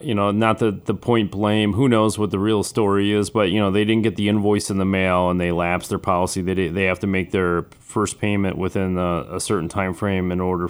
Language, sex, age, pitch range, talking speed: English, male, 30-49, 95-110 Hz, 260 wpm